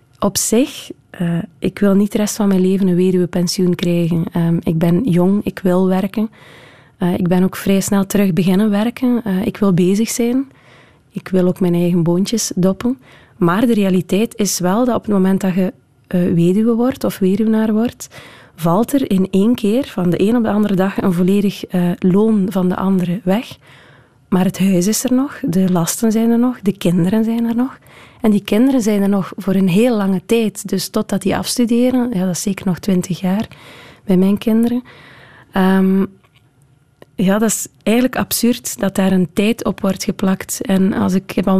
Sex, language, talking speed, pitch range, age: female, Dutch, 200 wpm, 180-220 Hz, 20-39